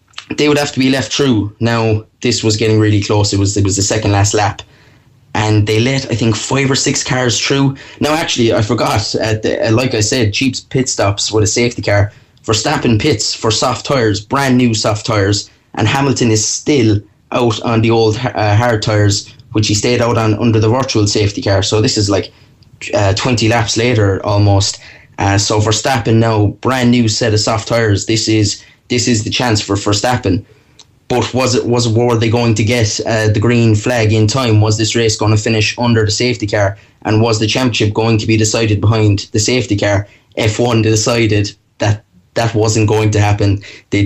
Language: English